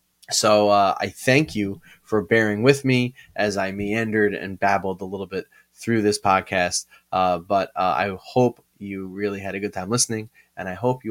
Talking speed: 195 wpm